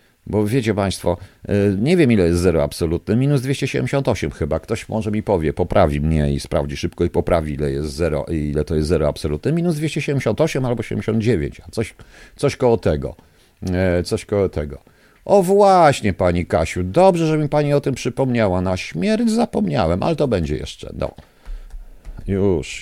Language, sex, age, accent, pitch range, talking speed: Polish, male, 50-69, native, 85-125 Hz, 170 wpm